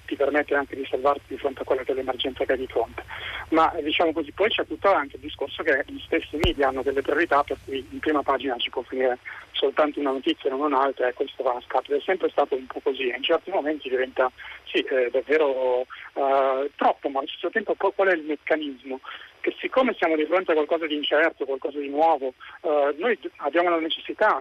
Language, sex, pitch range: Italian, male, 145-175 Hz